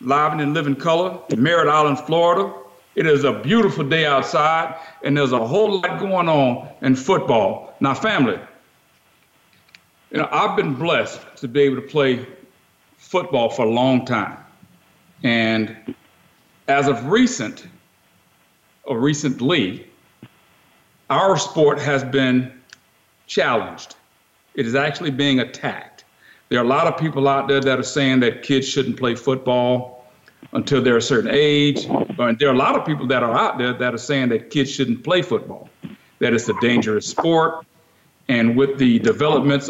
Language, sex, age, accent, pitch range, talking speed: English, male, 50-69, American, 130-160 Hz, 160 wpm